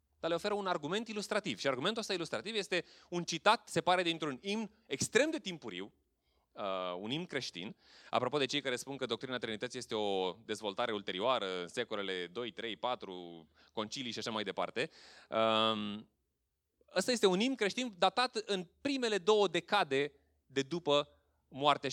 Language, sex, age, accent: Romanian, male, 20-39, native